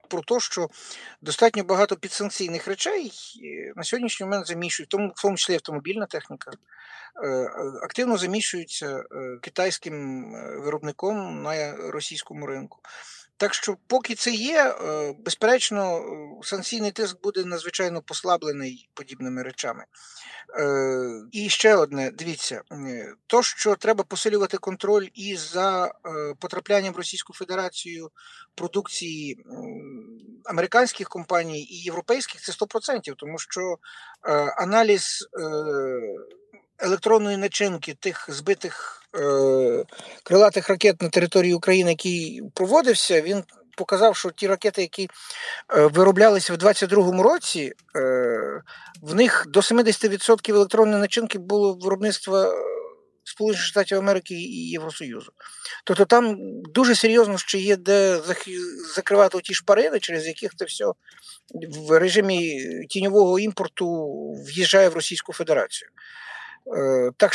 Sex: male